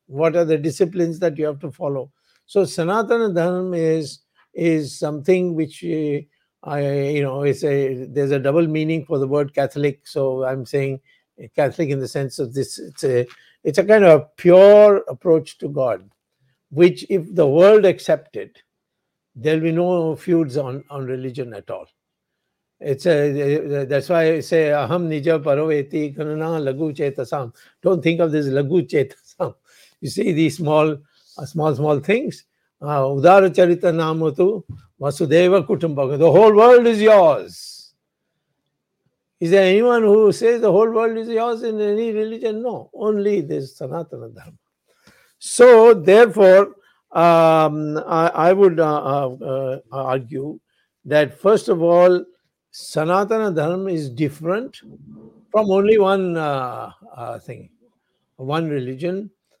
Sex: male